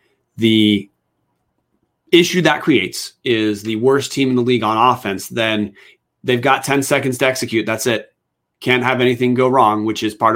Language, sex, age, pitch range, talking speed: English, male, 30-49, 110-135 Hz, 175 wpm